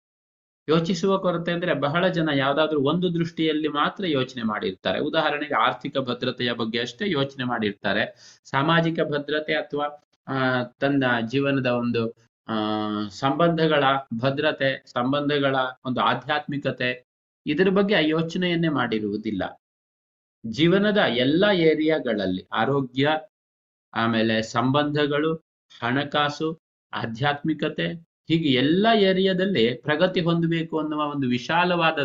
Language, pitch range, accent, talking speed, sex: Kannada, 125-165 Hz, native, 90 wpm, male